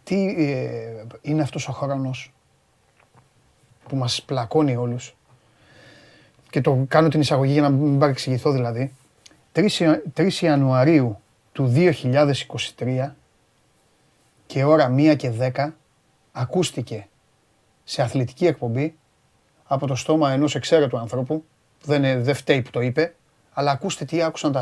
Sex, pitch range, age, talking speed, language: male, 130-180 Hz, 30-49, 125 wpm, Greek